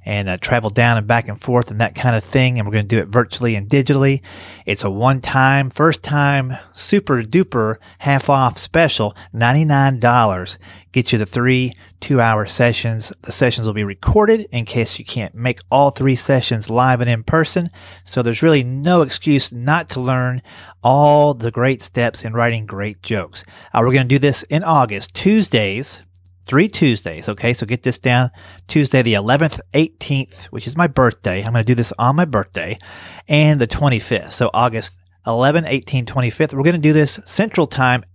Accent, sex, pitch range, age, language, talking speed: American, male, 105-135 Hz, 30-49, English, 180 wpm